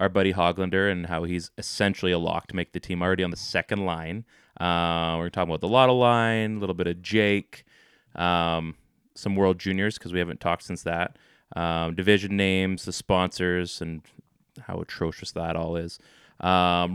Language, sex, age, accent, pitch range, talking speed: English, male, 20-39, American, 90-110 Hz, 185 wpm